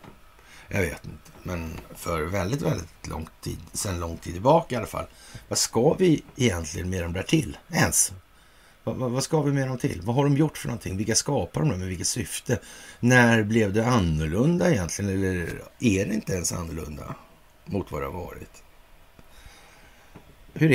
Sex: male